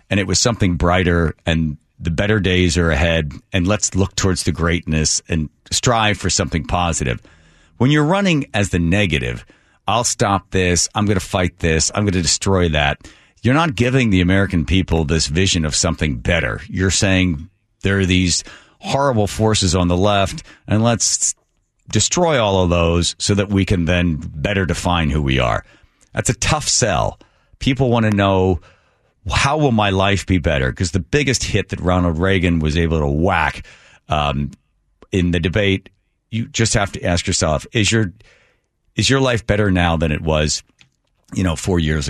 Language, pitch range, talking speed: English, 85-105 Hz, 180 wpm